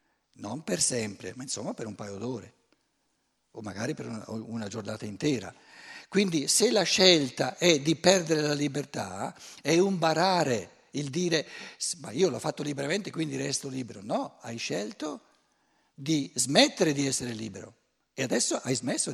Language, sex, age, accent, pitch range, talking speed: Italian, male, 60-79, native, 110-155 Hz, 155 wpm